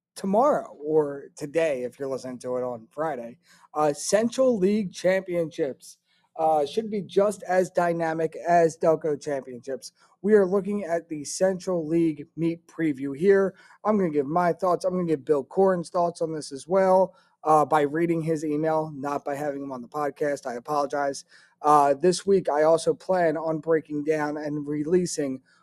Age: 30-49